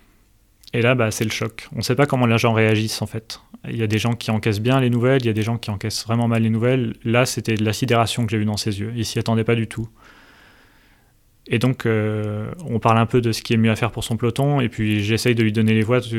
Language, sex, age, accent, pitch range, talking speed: French, male, 30-49, French, 110-120 Hz, 300 wpm